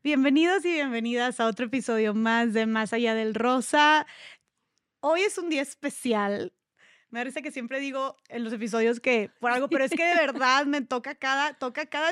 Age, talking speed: 20-39, 185 wpm